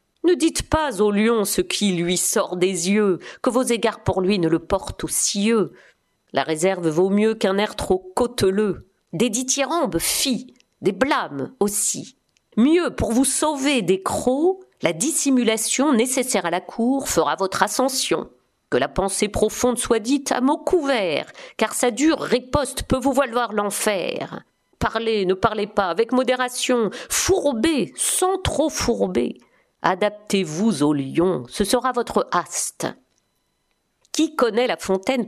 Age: 50-69